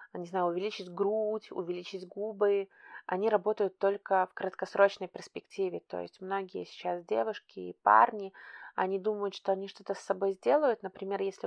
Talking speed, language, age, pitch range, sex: 150 wpm, Russian, 20-39, 190-210 Hz, female